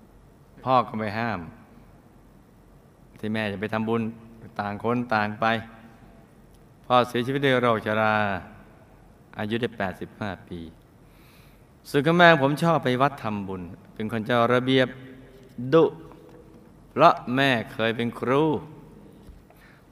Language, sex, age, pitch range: Thai, male, 20-39, 105-130 Hz